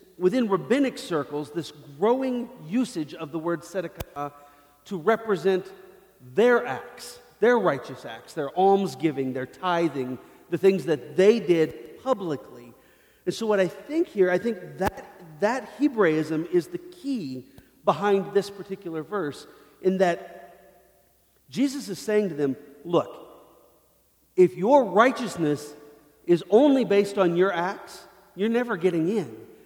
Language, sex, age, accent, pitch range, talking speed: English, male, 40-59, American, 160-215 Hz, 135 wpm